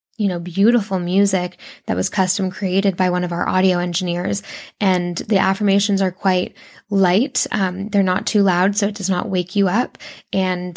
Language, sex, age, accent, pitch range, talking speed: English, female, 10-29, American, 185-205 Hz, 185 wpm